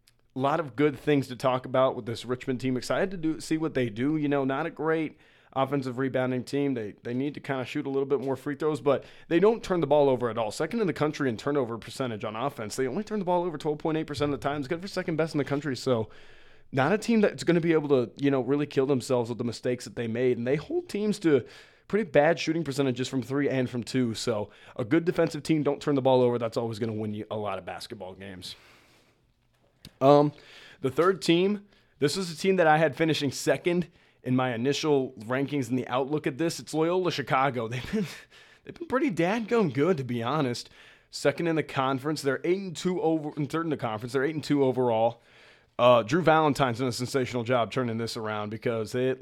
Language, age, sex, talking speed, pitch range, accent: English, 20-39, male, 245 wpm, 125-155 Hz, American